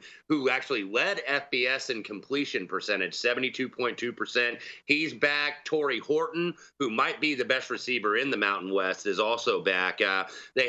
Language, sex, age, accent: English, male, 30-49, American